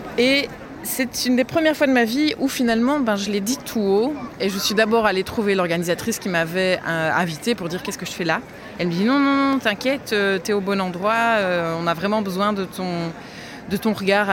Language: French